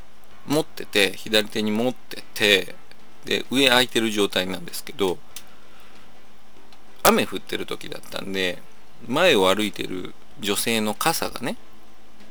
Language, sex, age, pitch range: Japanese, male, 40-59, 95-135 Hz